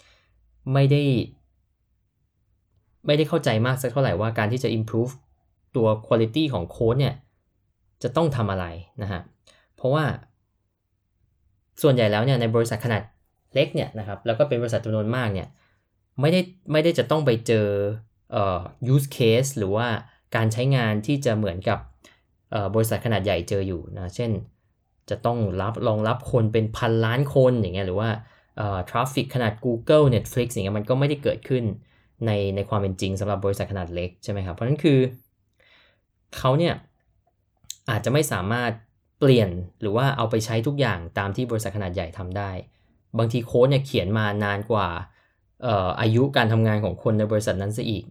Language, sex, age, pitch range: Thai, male, 10-29, 100-125 Hz